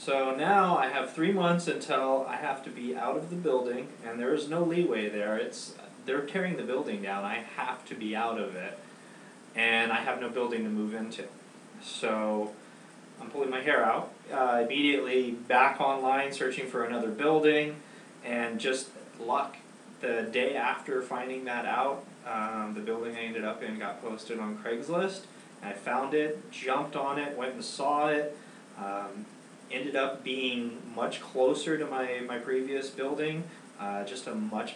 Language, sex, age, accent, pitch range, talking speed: English, male, 30-49, American, 120-155 Hz, 175 wpm